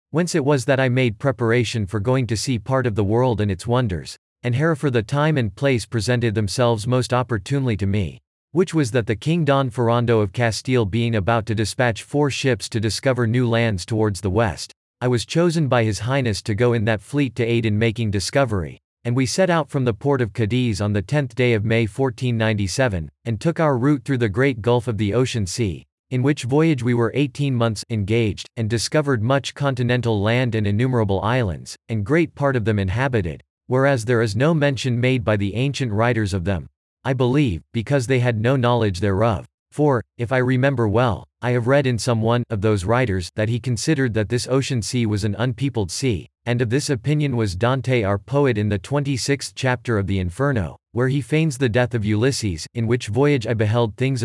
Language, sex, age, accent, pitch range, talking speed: English, male, 40-59, American, 110-130 Hz, 210 wpm